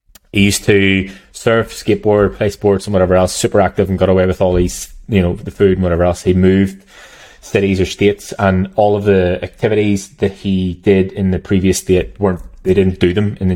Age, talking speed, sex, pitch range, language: 20-39, 215 wpm, male, 90-100 Hz, English